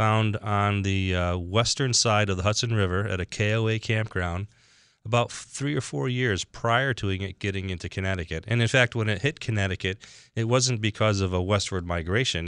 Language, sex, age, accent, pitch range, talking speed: English, male, 30-49, American, 90-110 Hz, 190 wpm